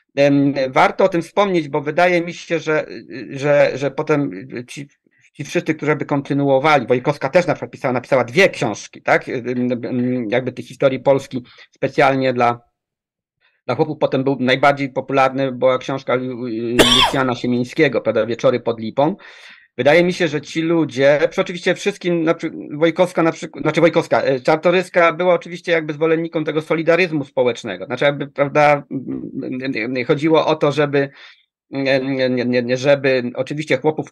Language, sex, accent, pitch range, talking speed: Polish, male, native, 135-165 Hz, 135 wpm